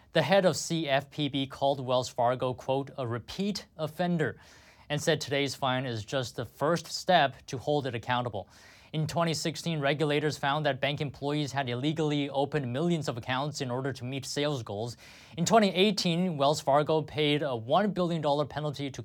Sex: male